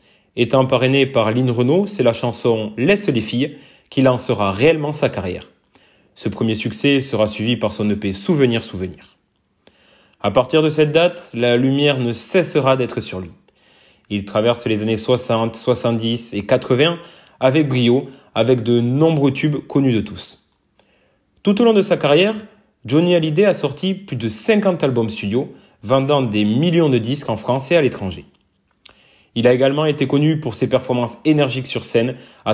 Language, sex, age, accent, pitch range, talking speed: French, male, 30-49, French, 110-150 Hz, 170 wpm